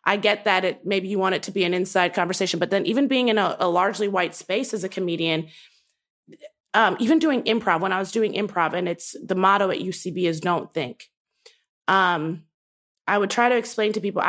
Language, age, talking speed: English, 30-49, 220 wpm